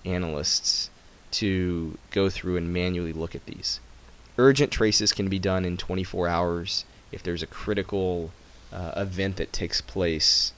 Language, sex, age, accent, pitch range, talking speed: English, male, 20-39, American, 85-105 Hz, 145 wpm